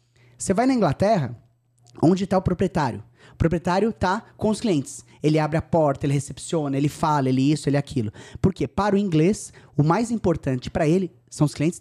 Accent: Brazilian